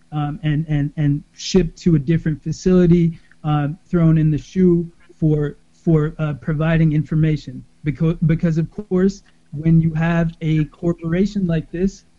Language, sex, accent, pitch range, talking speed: English, male, American, 155-175 Hz, 150 wpm